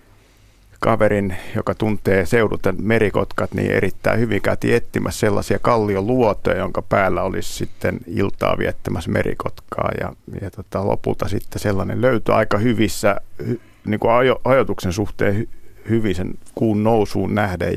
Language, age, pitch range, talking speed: Finnish, 50-69, 100-110 Hz, 130 wpm